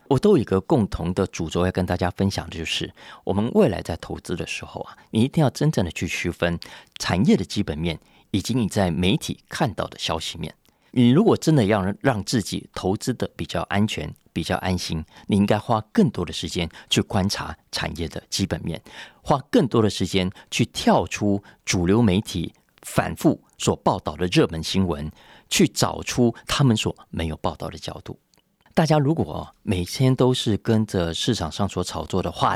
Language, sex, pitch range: Chinese, male, 85-115 Hz